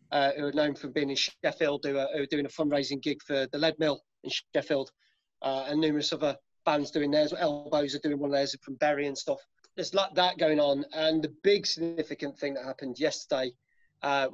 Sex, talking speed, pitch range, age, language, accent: male, 220 wpm, 145-165 Hz, 30-49, English, British